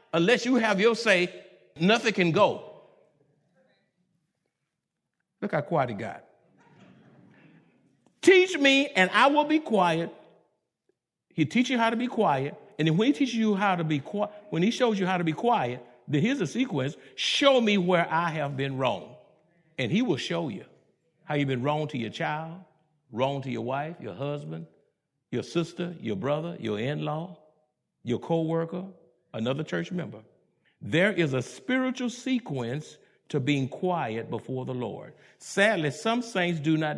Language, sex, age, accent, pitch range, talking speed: English, male, 60-79, American, 140-210 Hz, 165 wpm